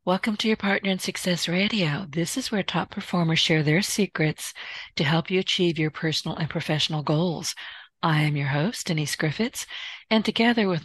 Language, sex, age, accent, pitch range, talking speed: English, female, 50-69, American, 150-185 Hz, 185 wpm